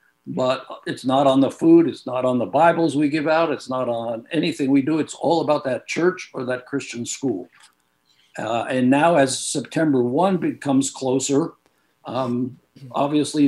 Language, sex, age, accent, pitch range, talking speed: English, male, 60-79, American, 115-145 Hz, 175 wpm